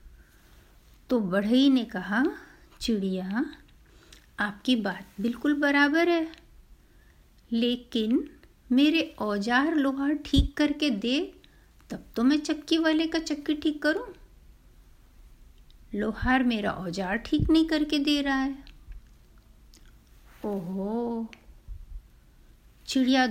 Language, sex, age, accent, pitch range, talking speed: Hindi, female, 50-69, native, 230-300 Hz, 95 wpm